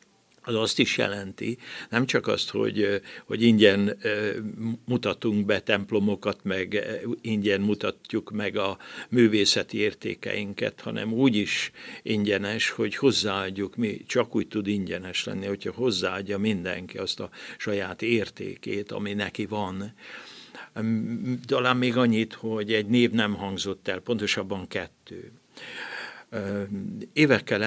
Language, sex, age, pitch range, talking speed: Hungarian, male, 60-79, 100-115 Hz, 115 wpm